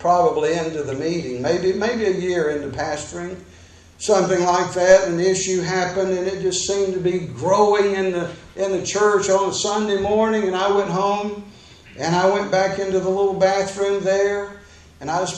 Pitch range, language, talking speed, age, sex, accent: 185-225 Hz, English, 195 wpm, 60-79, male, American